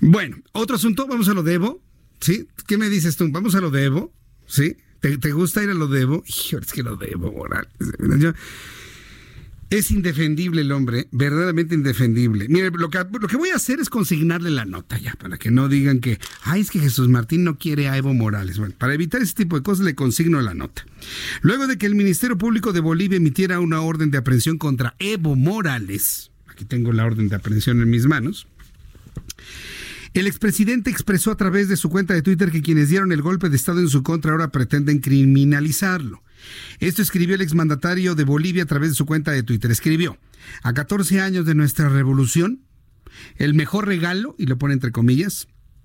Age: 50-69